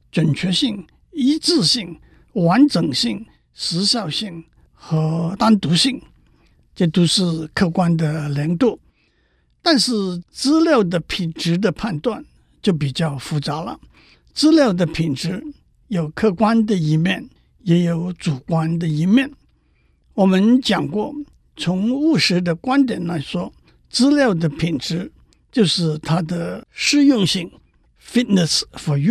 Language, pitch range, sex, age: Chinese, 165-235 Hz, male, 60-79